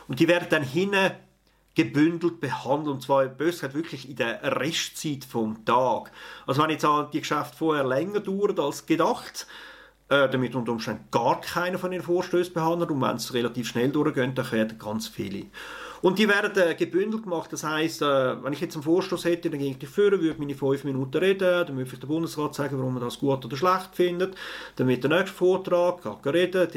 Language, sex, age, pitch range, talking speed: German, male, 40-59, 130-175 Hz, 205 wpm